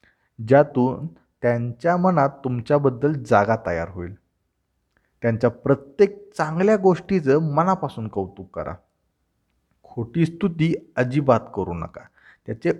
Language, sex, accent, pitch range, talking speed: Marathi, male, native, 115-170 Hz, 100 wpm